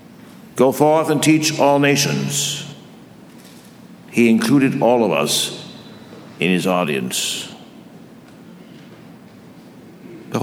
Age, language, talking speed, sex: 60-79, English, 85 wpm, male